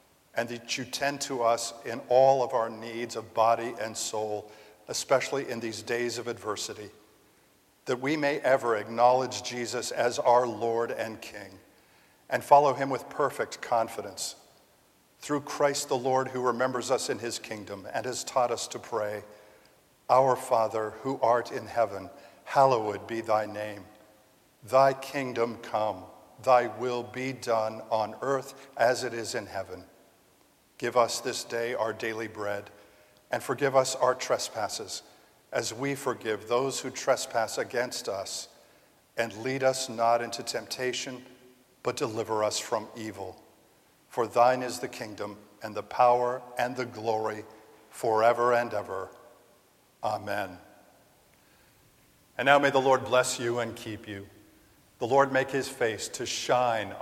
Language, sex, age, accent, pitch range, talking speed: English, male, 50-69, American, 110-125 Hz, 150 wpm